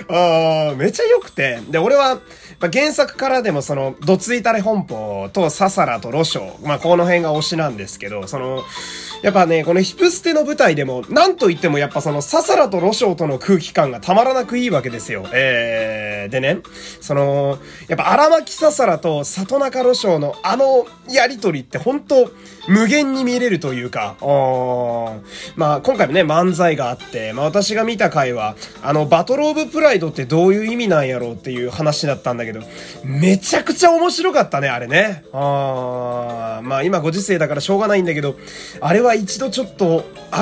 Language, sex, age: Japanese, male, 20-39